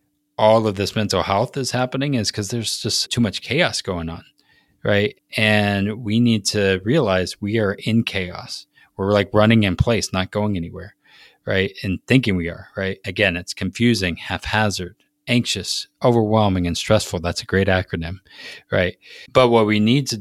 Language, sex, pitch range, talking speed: English, male, 95-110 Hz, 170 wpm